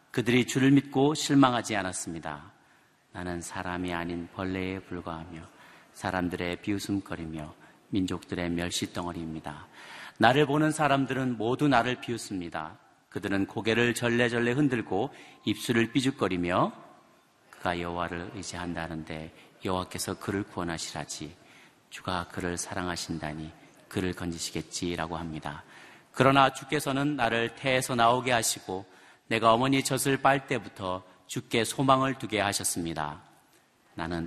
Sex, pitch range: male, 90-130 Hz